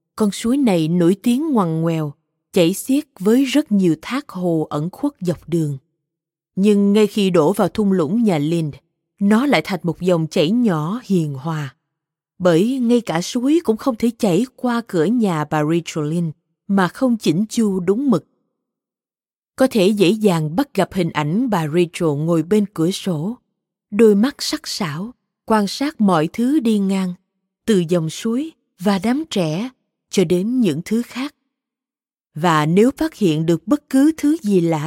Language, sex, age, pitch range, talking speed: Vietnamese, female, 20-39, 165-230 Hz, 170 wpm